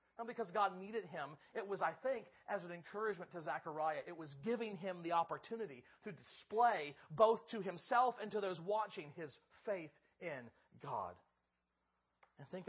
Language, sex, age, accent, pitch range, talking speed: English, male, 40-59, American, 155-220 Hz, 165 wpm